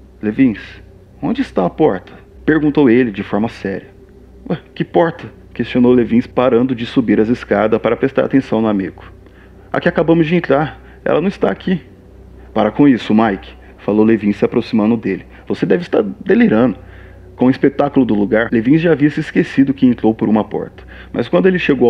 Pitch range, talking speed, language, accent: 100-140 Hz, 180 wpm, Portuguese, Brazilian